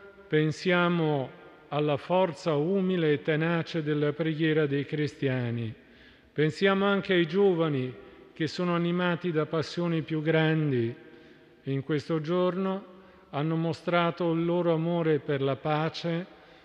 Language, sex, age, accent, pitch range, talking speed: Italian, male, 50-69, native, 145-170 Hz, 120 wpm